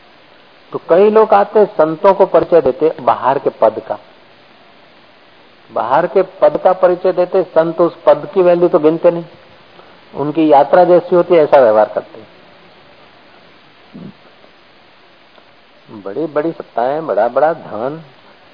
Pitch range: 135-170 Hz